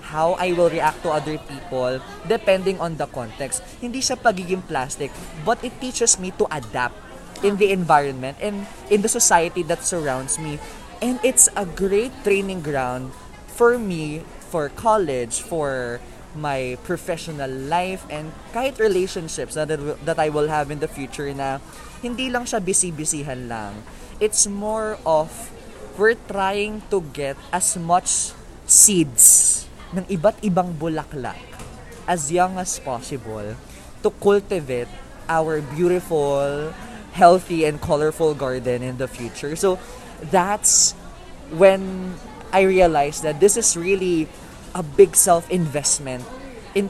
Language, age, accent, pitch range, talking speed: Filipino, 20-39, native, 140-195 Hz, 130 wpm